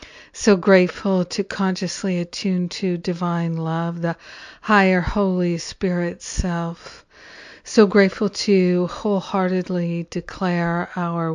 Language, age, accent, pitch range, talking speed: English, 50-69, American, 170-190 Hz, 100 wpm